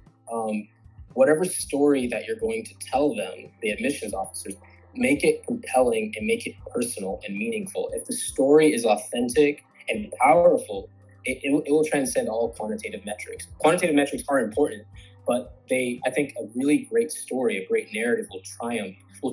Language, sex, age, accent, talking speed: English, male, 20-39, American, 170 wpm